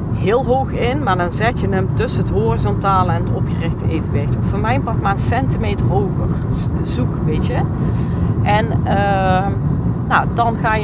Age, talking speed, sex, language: 40-59, 170 wpm, female, Dutch